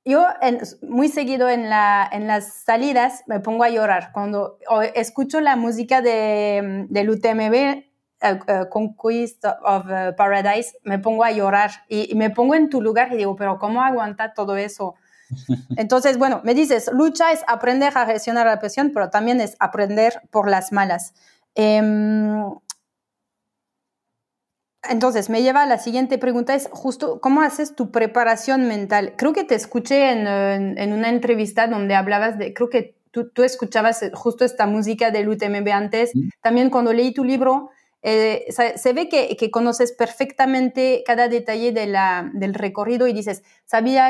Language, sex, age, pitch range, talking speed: French, female, 30-49, 210-250 Hz, 165 wpm